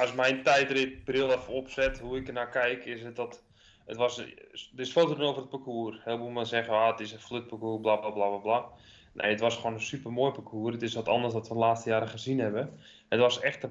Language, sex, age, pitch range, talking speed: Dutch, male, 20-39, 115-130 Hz, 250 wpm